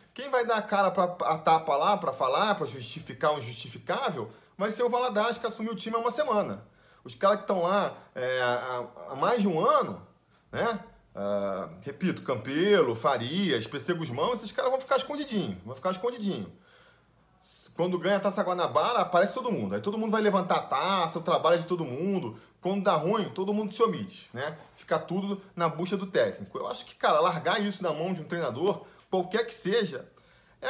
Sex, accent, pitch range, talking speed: male, Brazilian, 160-220 Hz, 195 wpm